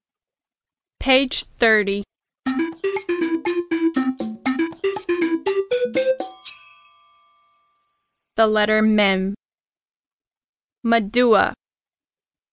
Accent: American